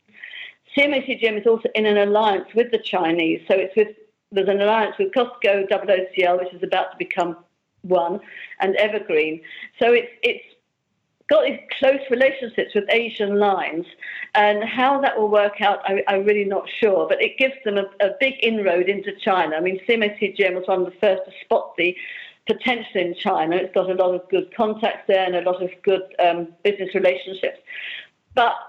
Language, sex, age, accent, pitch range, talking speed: English, female, 50-69, British, 185-220 Hz, 180 wpm